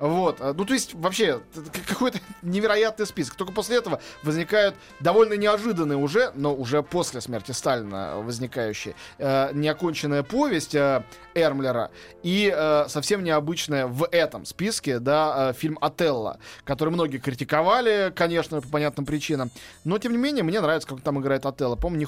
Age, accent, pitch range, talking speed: 20-39, native, 135-175 Hz, 150 wpm